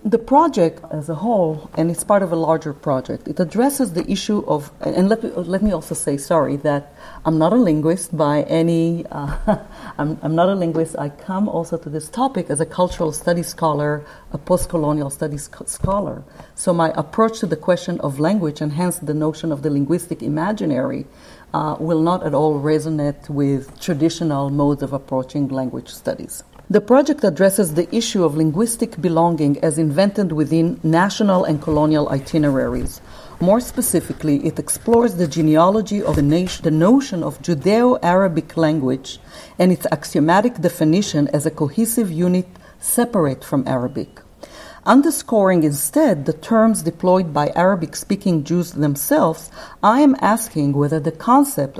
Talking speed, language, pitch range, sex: 160 wpm, English, 150-190 Hz, female